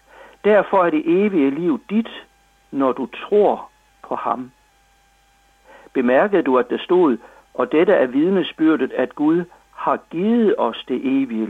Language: Danish